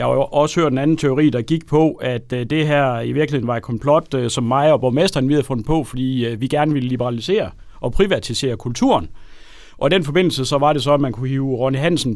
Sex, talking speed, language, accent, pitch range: male, 235 wpm, Danish, native, 115-145 Hz